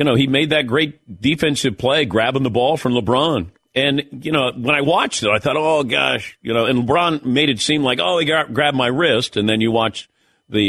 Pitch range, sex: 115-155 Hz, male